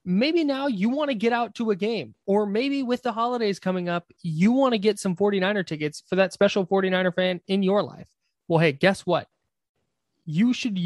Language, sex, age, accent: English, male, 20-39, American